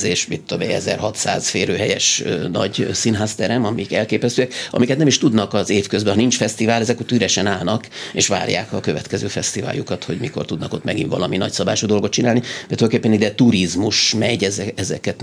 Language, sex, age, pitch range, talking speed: Hungarian, male, 30-49, 100-115 Hz, 160 wpm